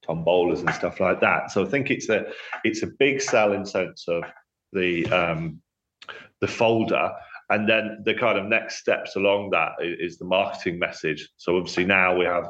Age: 30-49